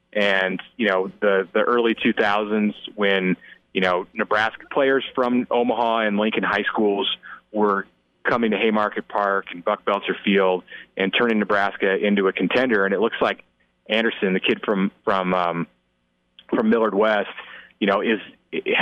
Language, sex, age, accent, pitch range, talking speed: English, male, 30-49, American, 90-110 Hz, 160 wpm